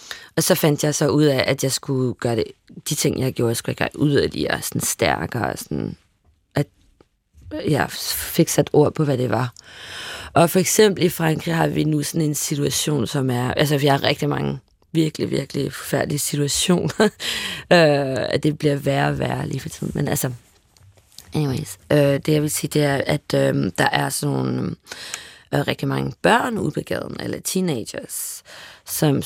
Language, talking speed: Danish, 185 wpm